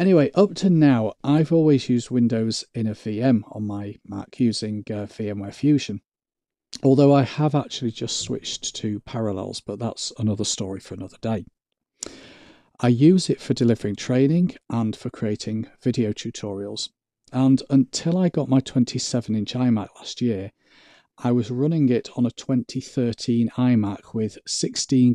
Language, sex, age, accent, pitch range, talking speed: English, male, 40-59, British, 105-130 Hz, 150 wpm